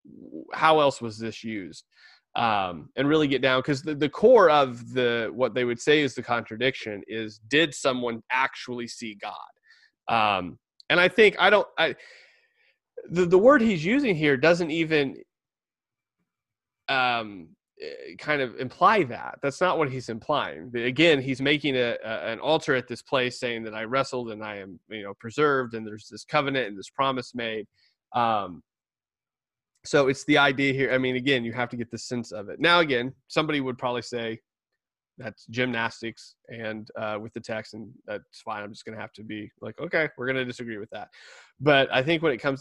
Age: 30-49